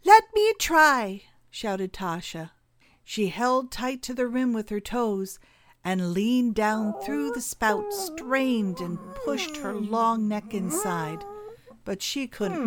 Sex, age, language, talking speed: female, 60-79, English, 140 wpm